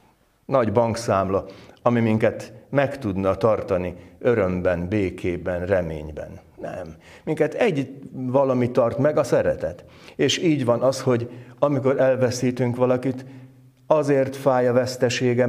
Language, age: Hungarian, 60-79